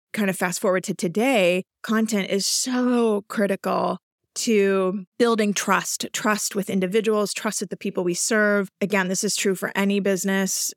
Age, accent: 30-49, American